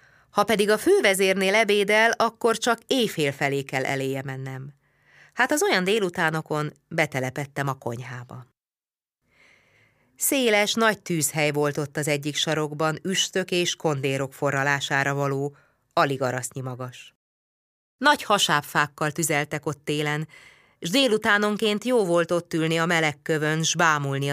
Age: 30-49